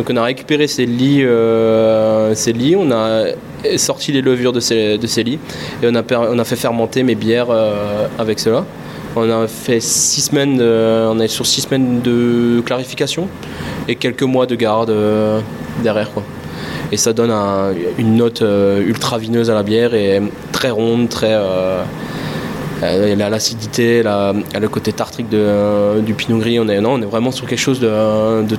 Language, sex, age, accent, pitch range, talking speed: French, male, 20-39, French, 110-125 Hz, 175 wpm